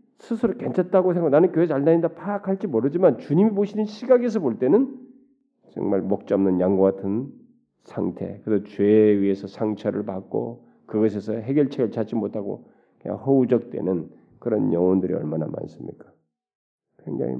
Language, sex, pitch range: Korean, male, 105-150 Hz